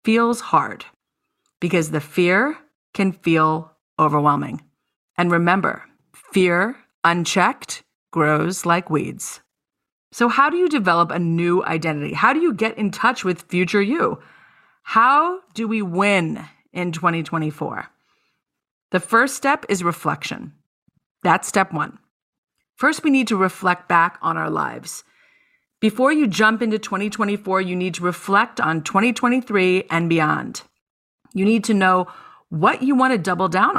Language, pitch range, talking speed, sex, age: English, 175-225 Hz, 140 wpm, female, 40-59